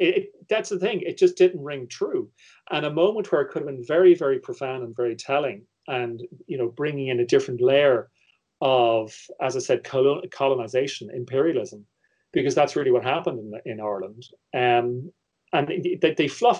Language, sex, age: English, male, 40-59